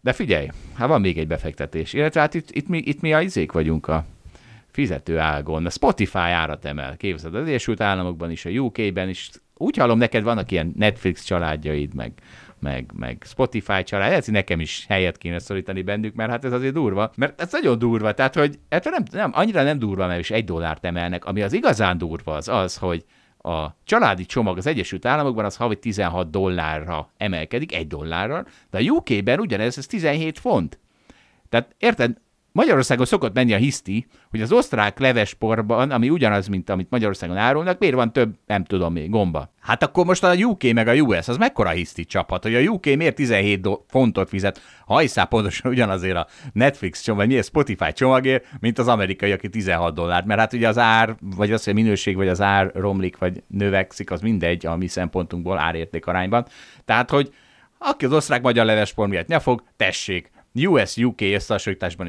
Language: Hungarian